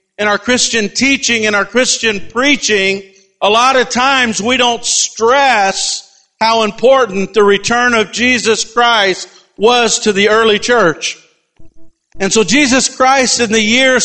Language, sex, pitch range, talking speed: English, male, 170-230 Hz, 145 wpm